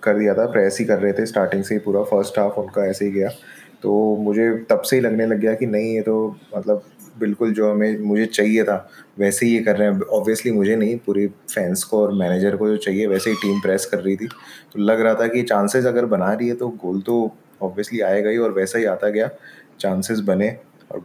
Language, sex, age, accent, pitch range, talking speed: Hindi, male, 20-39, native, 100-110 Hz, 240 wpm